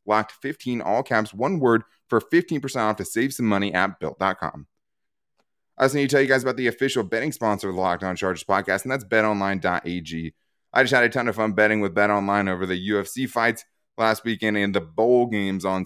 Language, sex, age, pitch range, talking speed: English, male, 20-39, 95-125 Hz, 210 wpm